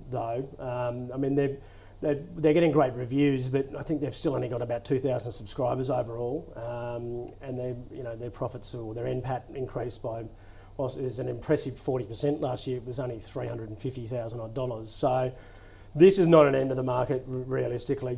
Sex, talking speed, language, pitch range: male, 210 wpm, English, 115-135 Hz